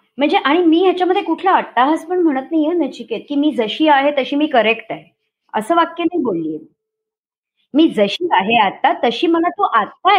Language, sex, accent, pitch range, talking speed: Marathi, male, native, 245-340 Hz, 105 wpm